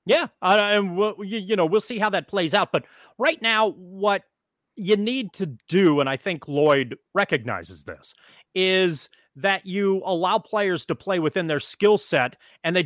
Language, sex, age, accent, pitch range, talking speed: English, male, 30-49, American, 155-200 Hz, 175 wpm